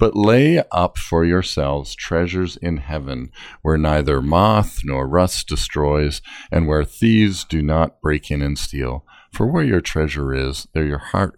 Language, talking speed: English, 165 wpm